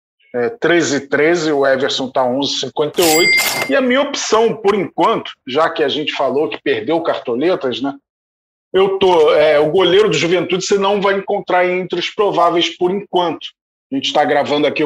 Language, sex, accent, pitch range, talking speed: Portuguese, male, Brazilian, 145-200 Hz, 190 wpm